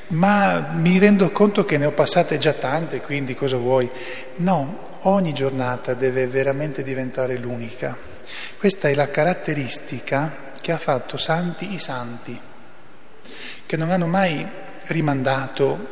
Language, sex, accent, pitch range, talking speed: Italian, male, native, 130-155 Hz, 130 wpm